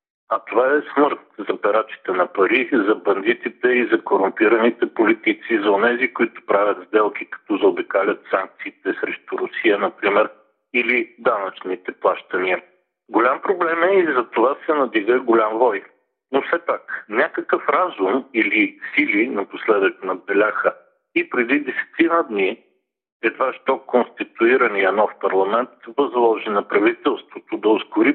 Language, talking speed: Bulgarian, 130 wpm